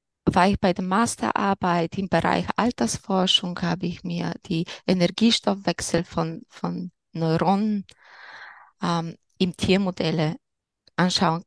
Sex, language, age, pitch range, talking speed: female, German, 20-39, 175-240 Hz, 105 wpm